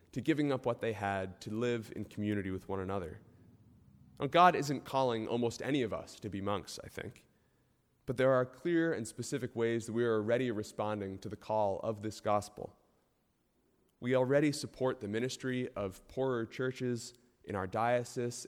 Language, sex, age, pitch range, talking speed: English, male, 20-39, 105-130 Hz, 175 wpm